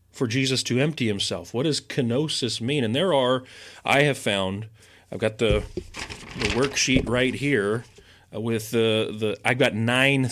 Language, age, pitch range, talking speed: English, 30-49, 105-130 Hz, 165 wpm